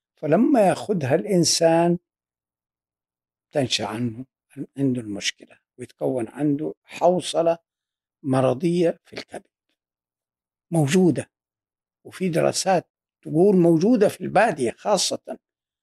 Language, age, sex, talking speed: Arabic, 60-79, male, 80 wpm